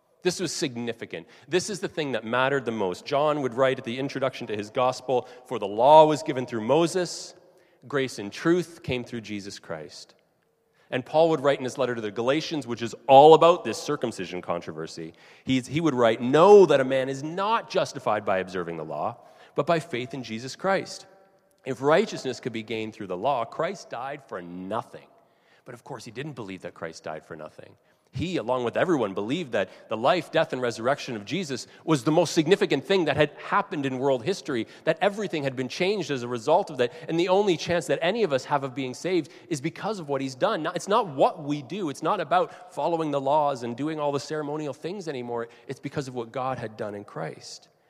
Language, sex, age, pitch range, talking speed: English, male, 30-49, 120-165 Hz, 215 wpm